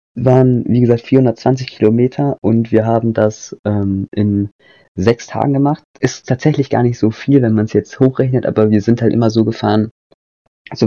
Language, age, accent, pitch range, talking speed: German, 20-39, German, 95-115 Hz, 180 wpm